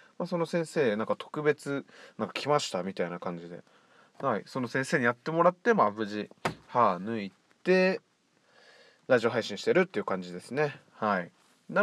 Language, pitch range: Japanese, 110-175 Hz